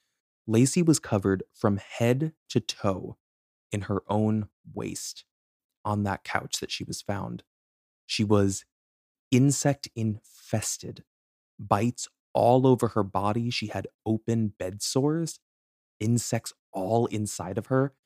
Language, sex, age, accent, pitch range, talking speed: English, male, 20-39, American, 95-120 Hz, 125 wpm